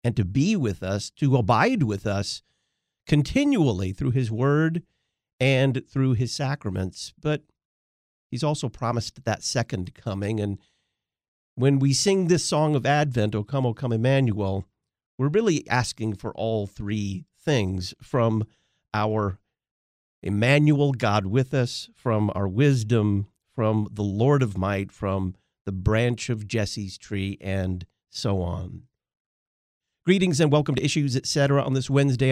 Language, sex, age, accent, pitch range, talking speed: English, male, 50-69, American, 105-140 Hz, 140 wpm